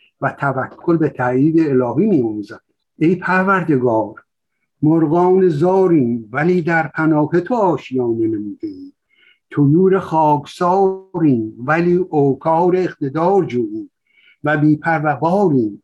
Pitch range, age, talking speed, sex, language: 130-170 Hz, 60-79, 100 wpm, male, Persian